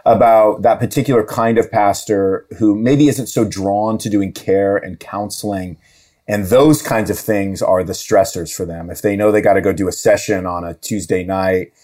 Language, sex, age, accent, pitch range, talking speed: English, male, 30-49, American, 105-135 Hz, 205 wpm